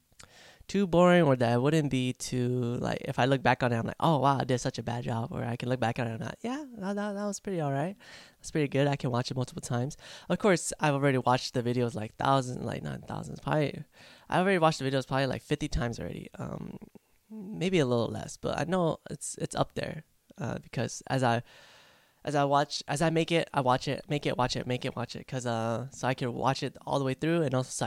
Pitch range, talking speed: 125-150 Hz, 260 wpm